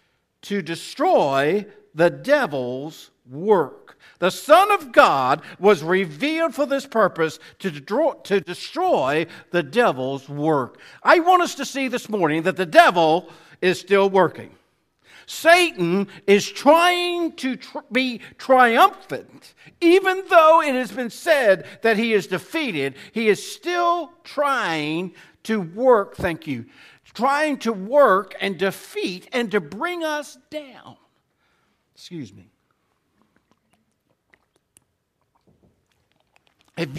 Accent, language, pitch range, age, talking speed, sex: American, English, 175-275 Hz, 60-79, 110 wpm, male